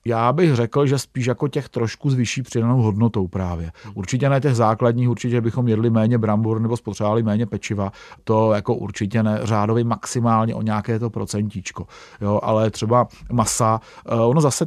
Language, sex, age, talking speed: Czech, male, 40-59, 160 wpm